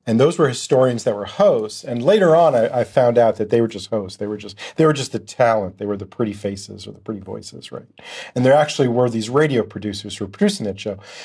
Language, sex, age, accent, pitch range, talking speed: English, male, 40-59, American, 105-125 Hz, 260 wpm